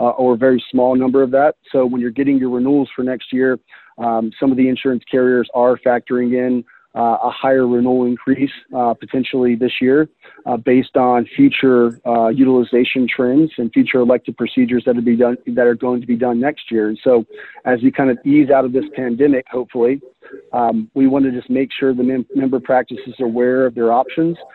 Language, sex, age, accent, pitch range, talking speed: English, male, 40-59, American, 120-130 Hz, 200 wpm